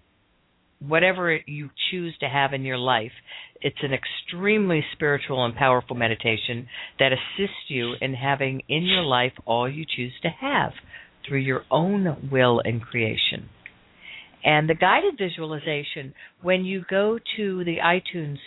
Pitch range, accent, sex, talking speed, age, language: 125-160 Hz, American, female, 145 wpm, 50-69, English